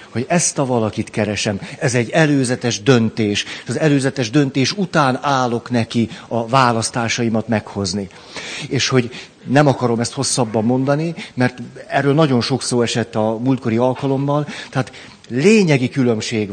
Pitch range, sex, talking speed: 115-140 Hz, male, 135 wpm